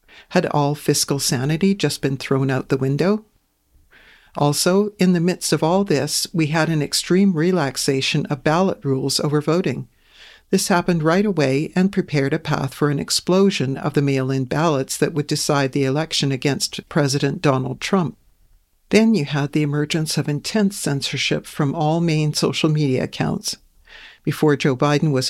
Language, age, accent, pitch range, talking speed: English, 60-79, American, 140-170 Hz, 165 wpm